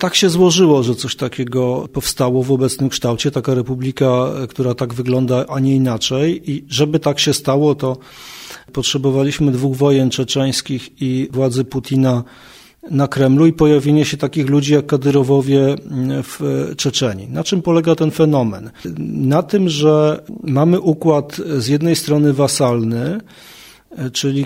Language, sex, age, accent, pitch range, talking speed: Polish, male, 40-59, native, 130-150 Hz, 140 wpm